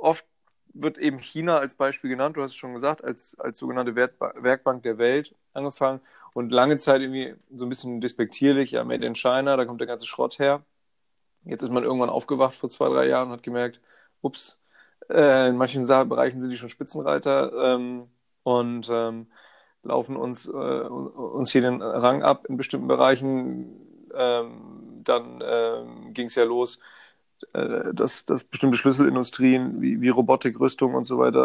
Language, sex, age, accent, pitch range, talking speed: German, male, 30-49, German, 120-135 Hz, 160 wpm